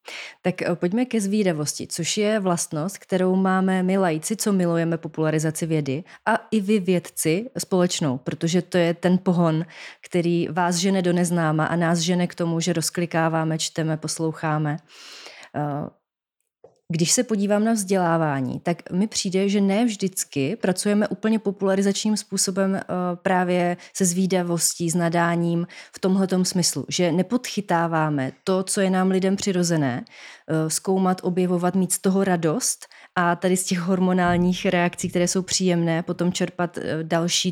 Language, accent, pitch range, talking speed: Czech, native, 165-190 Hz, 140 wpm